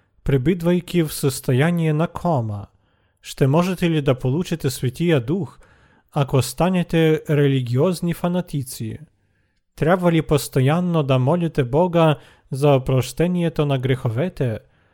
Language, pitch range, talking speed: Bulgarian, 125-165 Hz, 105 wpm